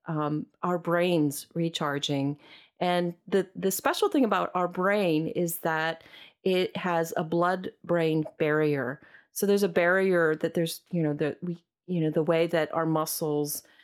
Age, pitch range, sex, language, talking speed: 40-59, 155-195 Hz, female, English, 155 wpm